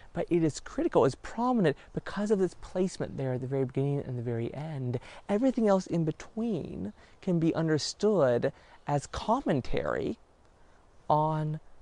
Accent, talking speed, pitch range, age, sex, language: American, 145 wpm, 120-170 Hz, 30-49, male, English